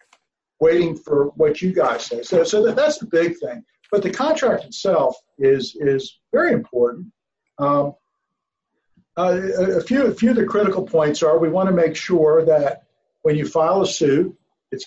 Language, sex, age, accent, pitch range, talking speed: English, male, 50-69, American, 150-200 Hz, 175 wpm